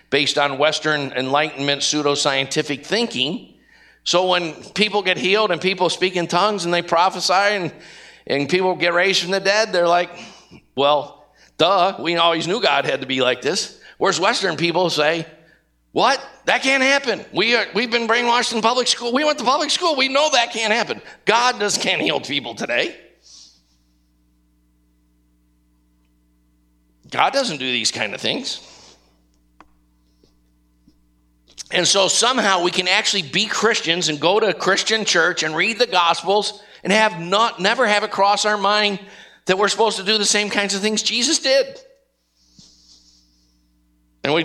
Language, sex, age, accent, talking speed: English, male, 50-69, American, 160 wpm